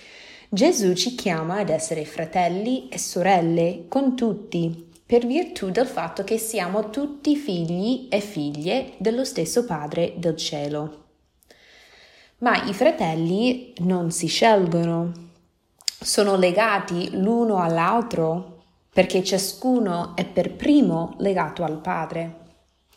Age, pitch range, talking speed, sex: 20-39, 170-230 Hz, 110 wpm, female